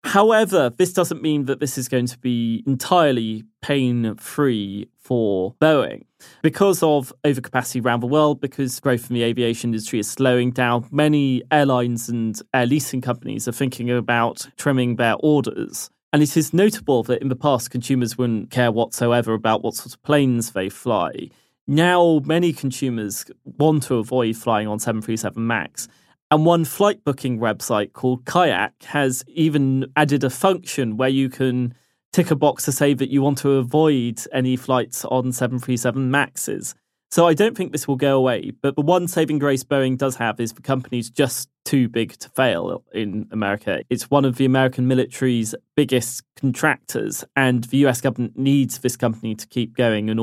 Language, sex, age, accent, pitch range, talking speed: English, male, 20-39, British, 115-145 Hz, 175 wpm